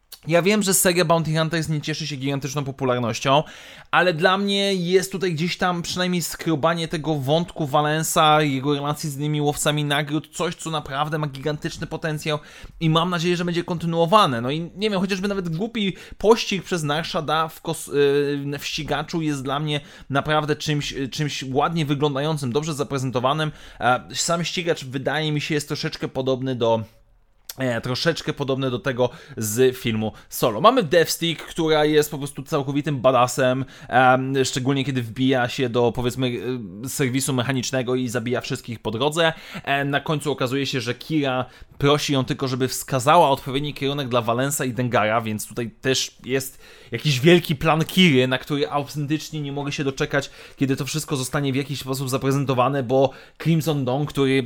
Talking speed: 165 wpm